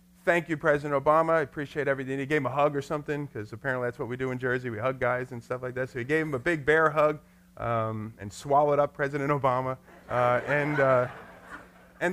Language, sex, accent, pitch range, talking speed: English, male, American, 125-180 Hz, 235 wpm